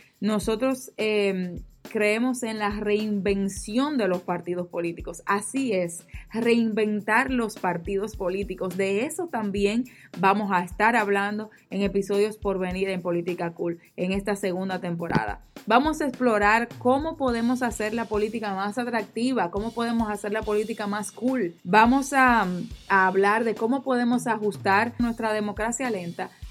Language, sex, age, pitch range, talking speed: Spanish, female, 20-39, 190-235 Hz, 140 wpm